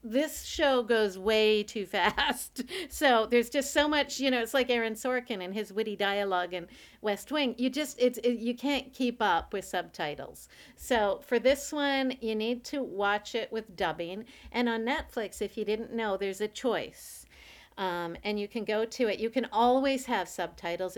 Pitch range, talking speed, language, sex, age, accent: 195-255 Hz, 190 wpm, English, female, 50-69, American